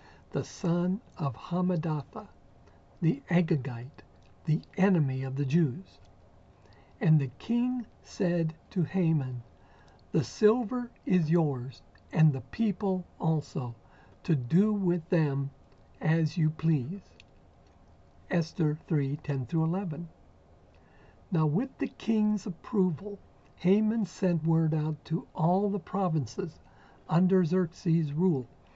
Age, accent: 60-79, American